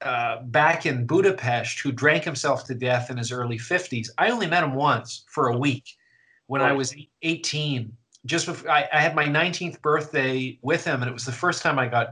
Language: English